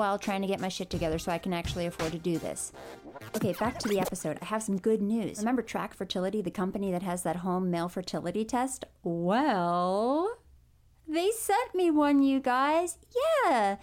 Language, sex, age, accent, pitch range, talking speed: English, female, 30-49, American, 180-265 Hz, 195 wpm